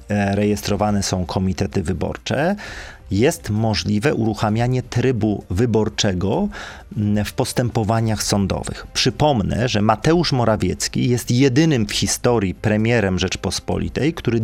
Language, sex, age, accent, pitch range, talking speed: Polish, male, 40-59, native, 105-135 Hz, 95 wpm